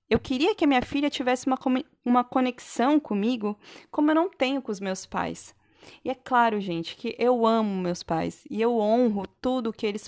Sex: female